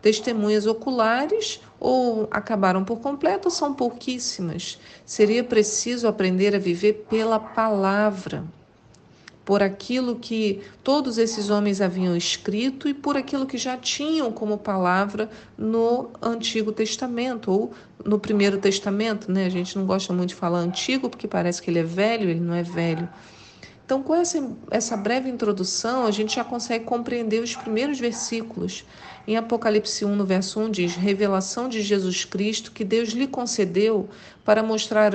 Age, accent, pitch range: 40-59, Brazilian, 195-240 Hz